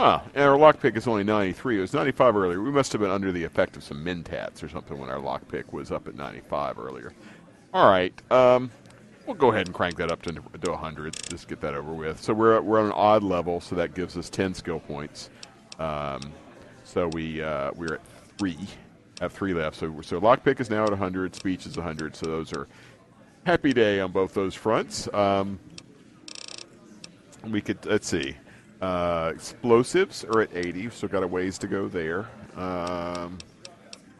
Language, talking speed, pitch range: English, 205 wpm, 85-110 Hz